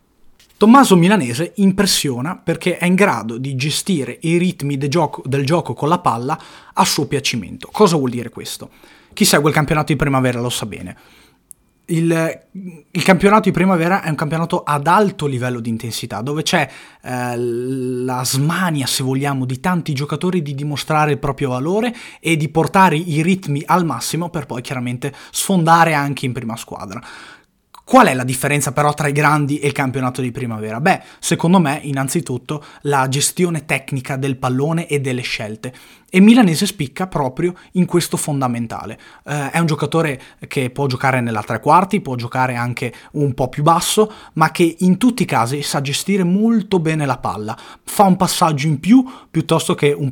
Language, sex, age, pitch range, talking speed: Italian, male, 20-39, 135-175 Hz, 170 wpm